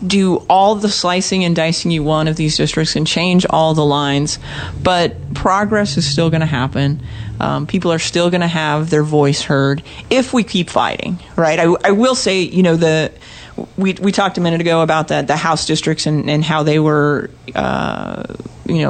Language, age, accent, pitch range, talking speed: English, 40-59, American, 150-180 Hz, 205 wpm